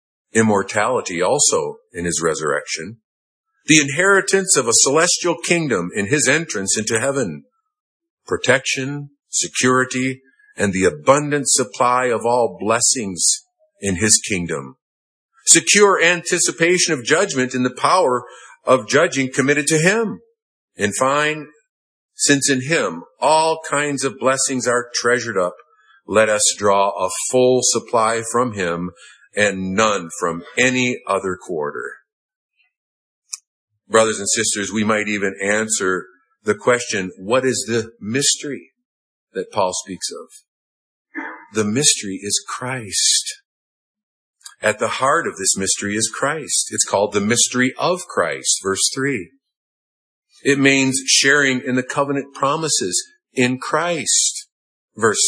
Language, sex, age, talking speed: English, male, 50-69, 125 wpm